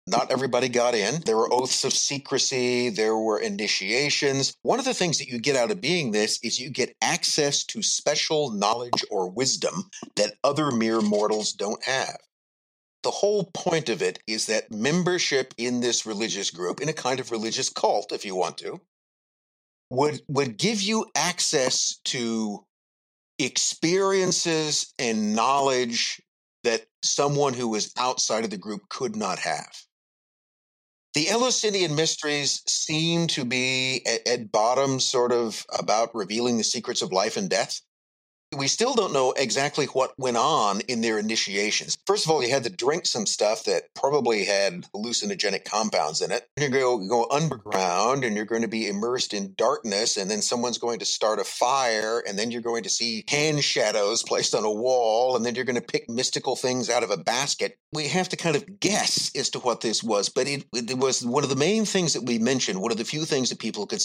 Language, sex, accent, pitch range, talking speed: English, male, American, 115-155 Hz, 190 wpm